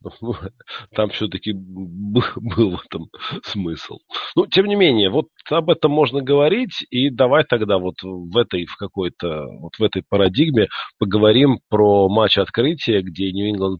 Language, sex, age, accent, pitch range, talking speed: Russian, male, 40-59, native, 95-120 Hz, 130 wpm